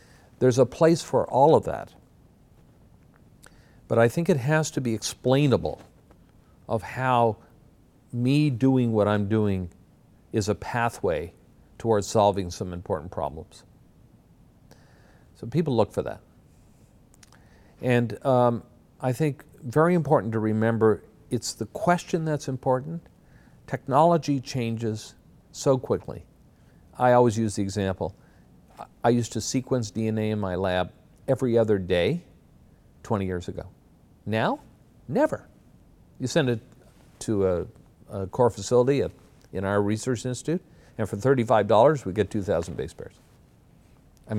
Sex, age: male, 50-69